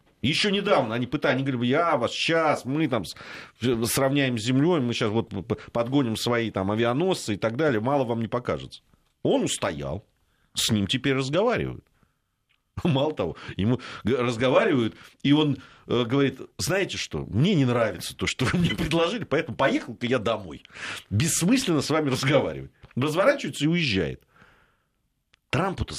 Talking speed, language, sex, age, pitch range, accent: 145 wpm, Russian, male, 40-59, 115-160 Hz, native